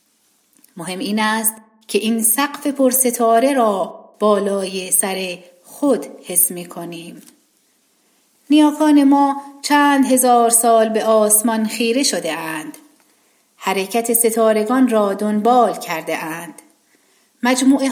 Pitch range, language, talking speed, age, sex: 195-250 Hz, Persian, 105 wpm, 40-59, female